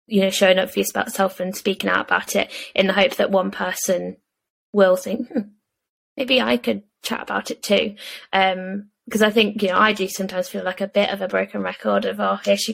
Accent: British